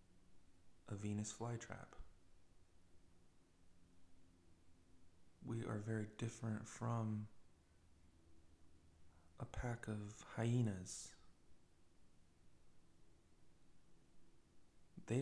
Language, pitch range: English, 85-115 Hz